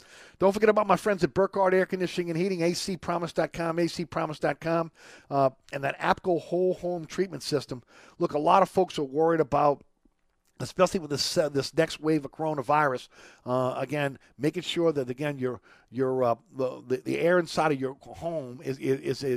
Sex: male